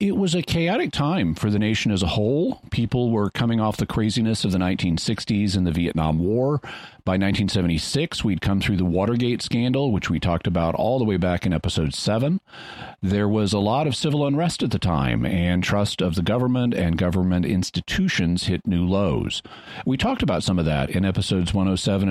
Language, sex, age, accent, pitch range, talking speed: English, male, 40-59, American, 90-120 Hz, 200 wpm